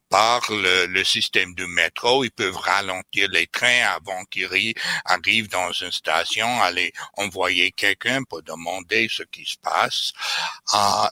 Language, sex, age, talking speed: French, male, 60-79, 145 wpm